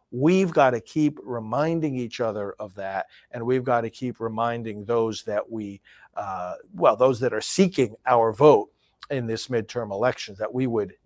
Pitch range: 110-135 Hz